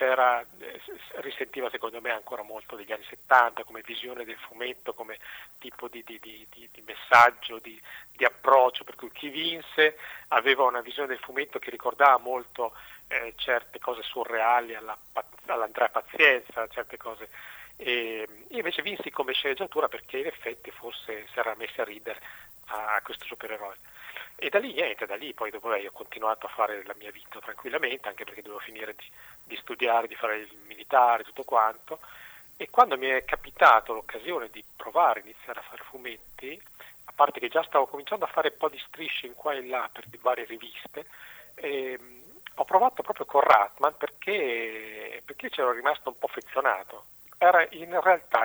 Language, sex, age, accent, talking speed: Italian, male, 40-59, native, 175 wpm